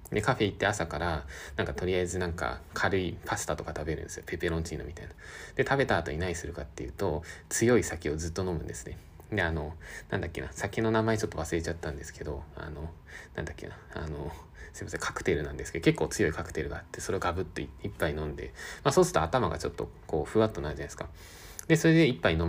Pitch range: 80-110 Hz